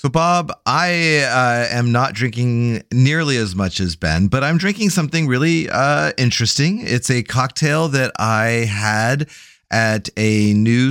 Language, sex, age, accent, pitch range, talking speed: English, male, 30-49, American, 95-135 Hz, 155 wpm